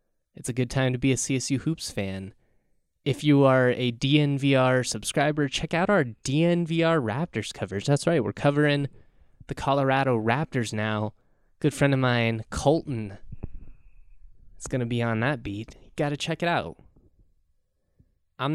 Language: English